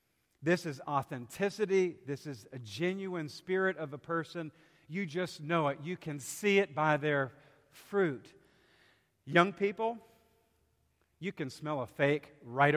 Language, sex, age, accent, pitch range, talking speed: English, male, 50-69, American, 125-170 Hz, 140 wpm